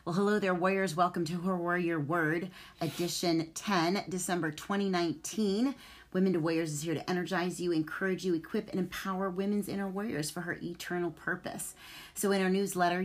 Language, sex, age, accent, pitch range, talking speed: English, female, 30-49, American, 160-190 Hz, 170 wpm